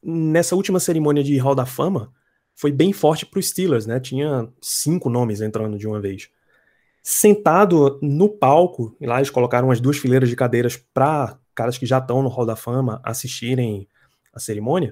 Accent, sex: Brazilian, male